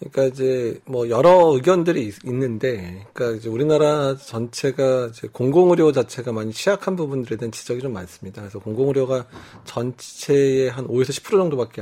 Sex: male